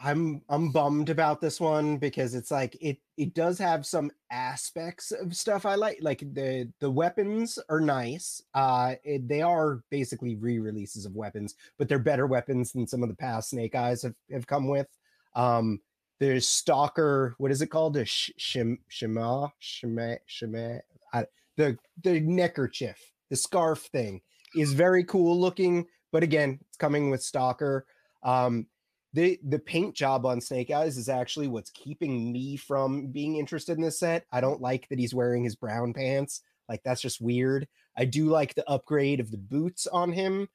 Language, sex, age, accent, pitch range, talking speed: English, male, 30-49, American, 125-160 Hz, 170 wpm